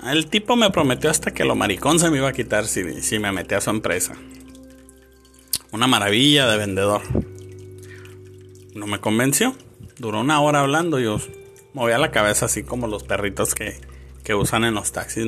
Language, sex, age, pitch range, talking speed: Spanish, male, 30-49, 95-125 Hz, 180 wpm